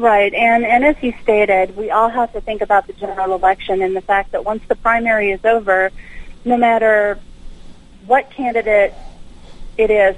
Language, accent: English, American